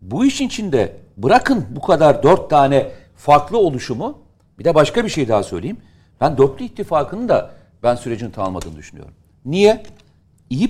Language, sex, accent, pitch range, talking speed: Turkish, male, native, 95-145 Hz, 150 wpm